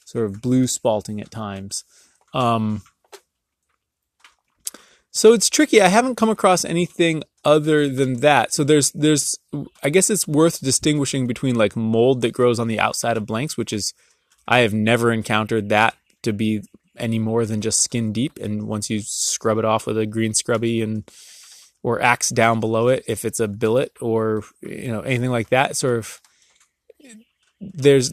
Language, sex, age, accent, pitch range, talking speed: English, male, 20-39, American, 110-150 Hz, 170 wpm